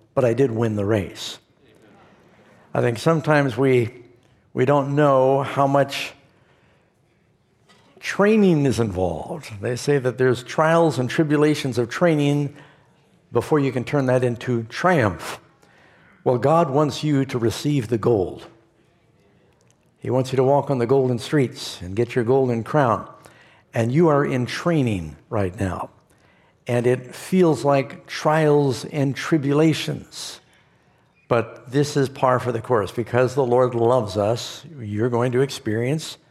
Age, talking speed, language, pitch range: 60-79, 140 wpm, English, 115-145 Hz